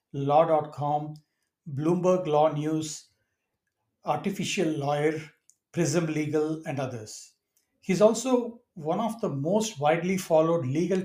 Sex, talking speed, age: male, 105 wpm, 60-79